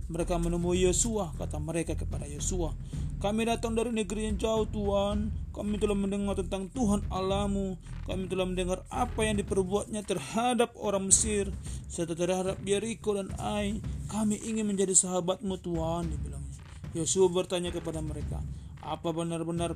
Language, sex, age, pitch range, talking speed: Indonesian, male, 30-49, 160-200 Hz, 135 wpm